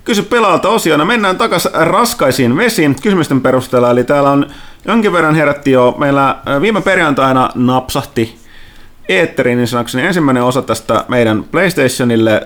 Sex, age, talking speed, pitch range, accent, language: male, 30-49, 135 wpm, 105-145 Hz, native, Finnish